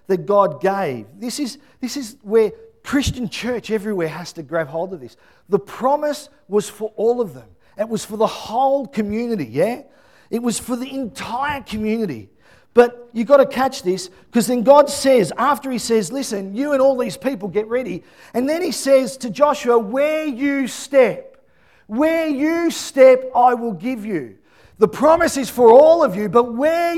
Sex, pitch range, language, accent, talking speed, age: male, 210-280 Hz, English, Australian, 185 wpm, 40-59